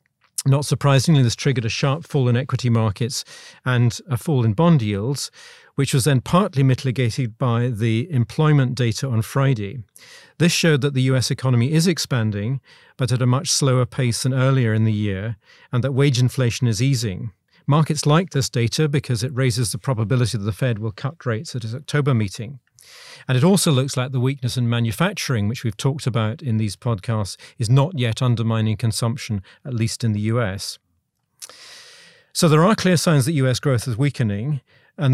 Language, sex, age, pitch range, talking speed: English, male, 40-59, 115-140 Hz, 185 wpm